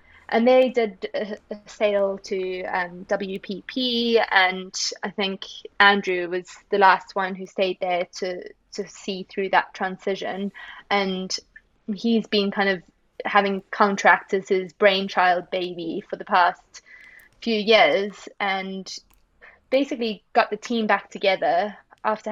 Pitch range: 190-215 Hz